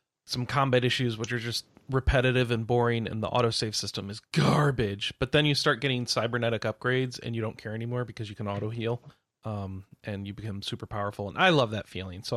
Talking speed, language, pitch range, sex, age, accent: 215 wpm, English, 110-140 Hz, male, 30-49, American